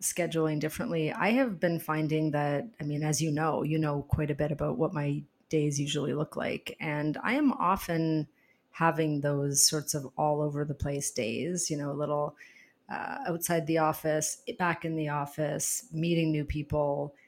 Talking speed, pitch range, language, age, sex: 180 wpm, 150-190 Hz, English, 30-49, female